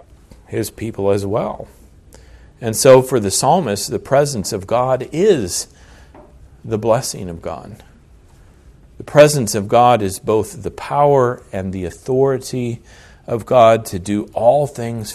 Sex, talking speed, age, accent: male, 140 wpm, 40-59, American